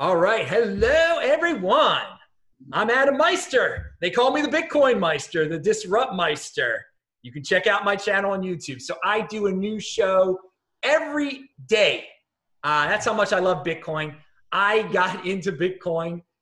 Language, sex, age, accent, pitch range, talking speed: English, male, 30-49, American, 165-225 Hz, 155 wpm